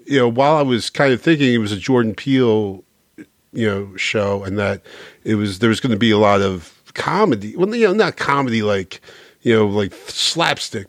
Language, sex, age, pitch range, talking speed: English, male, 50-69, 100-125 Hz, 210 wpm